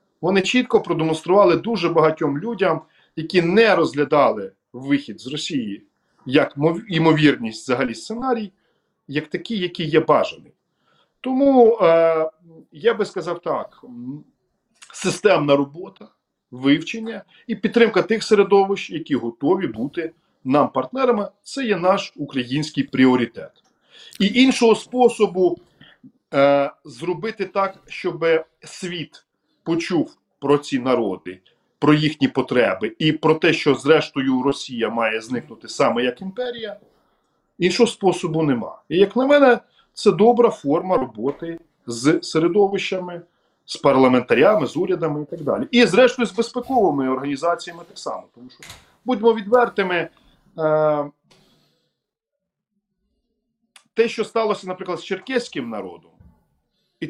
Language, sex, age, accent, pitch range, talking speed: Ukrainian, male, 40-59, native, 145-210 Hz, 115 wpm